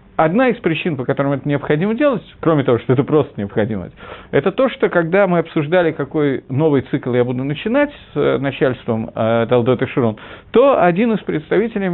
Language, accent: Russian, native